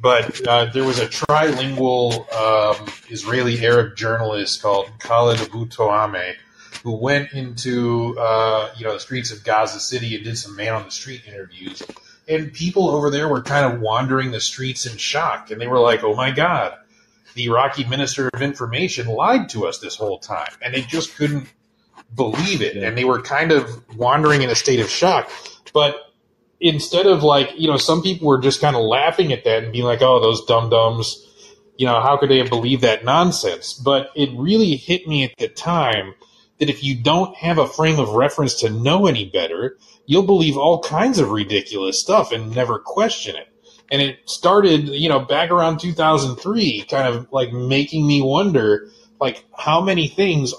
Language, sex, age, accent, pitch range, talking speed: English, male, 30-49, American, 115-155 Hz, 185 wpm